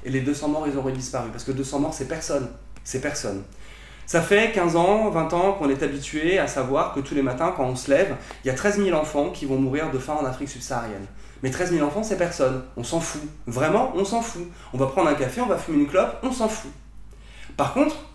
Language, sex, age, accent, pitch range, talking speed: French, male, 20-39, French, 130-180 Hz, 250 wpm